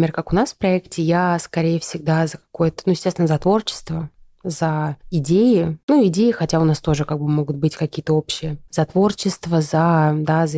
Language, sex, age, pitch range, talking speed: Russian, female, 20-39, 155-175 Hz, 195 wpm